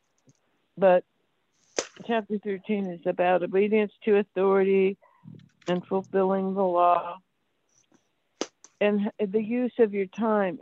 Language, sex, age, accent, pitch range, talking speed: English, female, 60-79, American, 180-205 Hz, 100 wpm